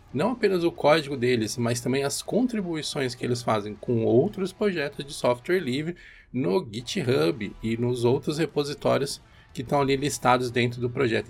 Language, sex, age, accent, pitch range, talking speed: Portuguese, male, 20-39, Brazilian, 125-165 Hz, 165 wpm